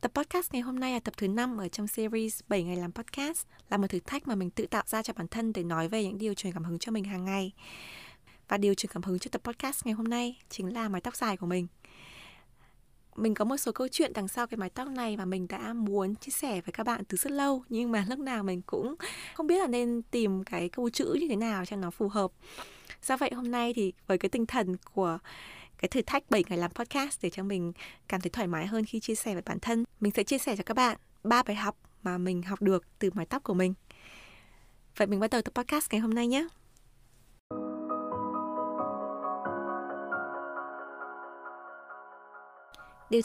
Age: 20-39